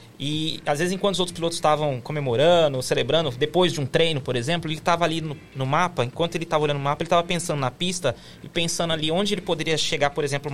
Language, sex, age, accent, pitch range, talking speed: Portuguese, male, 20-39, Brazilian, 150-175 Hz, 240 wpm